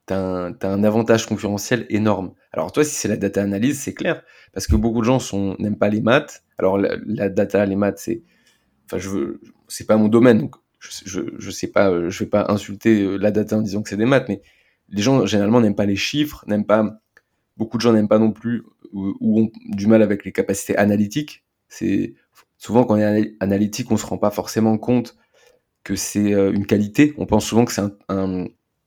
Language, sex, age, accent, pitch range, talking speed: French, male, 20-39, French, 100-115 Hz, 220 wpm